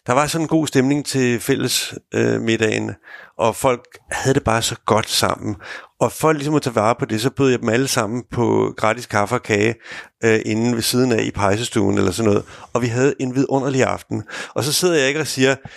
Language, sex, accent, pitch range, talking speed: Danish, male, native, 120-155 Hz, 230 wpm